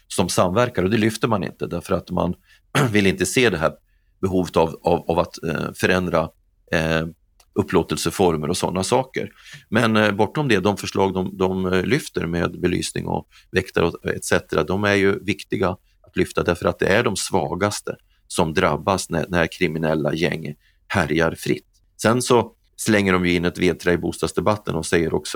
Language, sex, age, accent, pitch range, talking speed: Swedish, male, 30-49, native, 85-95 Hz, 175 wpm